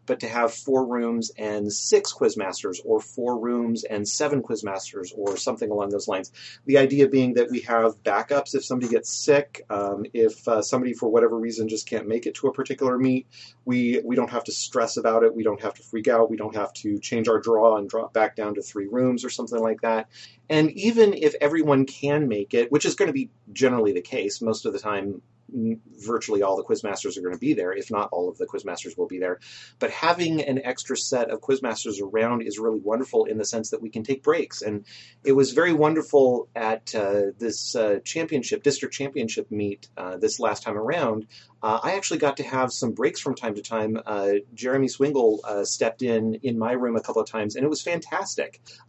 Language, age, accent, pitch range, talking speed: English, 30-49, American, 110-140 Hz, 225 wpm